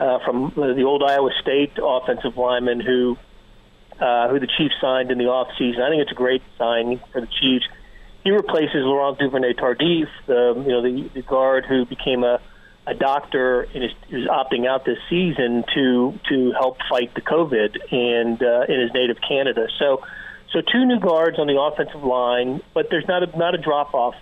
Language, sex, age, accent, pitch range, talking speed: English, male, 40-59, American, 125-150 Hz, 195 wpm